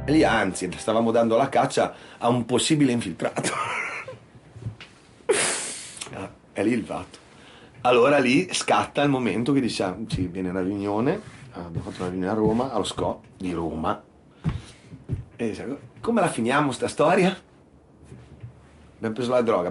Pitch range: 95-130 Hz